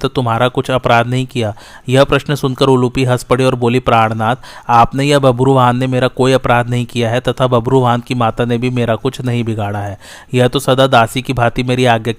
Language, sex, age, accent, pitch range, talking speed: Hindi, male, 30-49, native, 120-135 Hz, 150 wpm